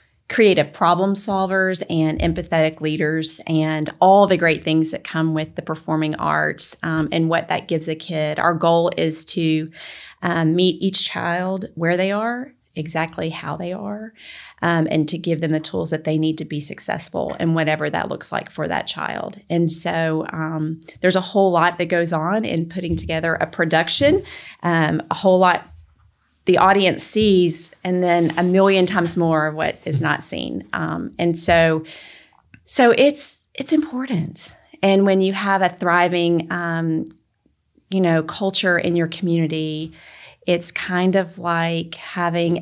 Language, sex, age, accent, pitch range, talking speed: English, female, 30-49, American, 160-185 Hz, 165 wpm